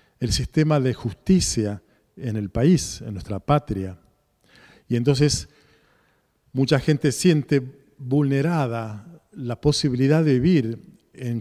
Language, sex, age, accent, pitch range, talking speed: Spanish, male, 40-59, Argentinian, 120-145 Hz, 110 wpm